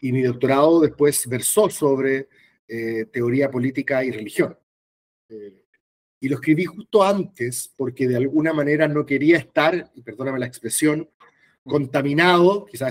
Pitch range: 125-155 Hz